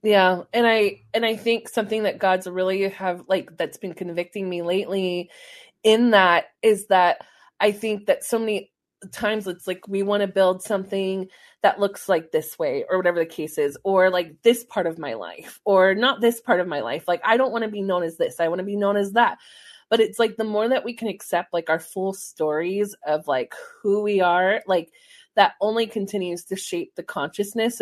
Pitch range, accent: 180-220 Hz, American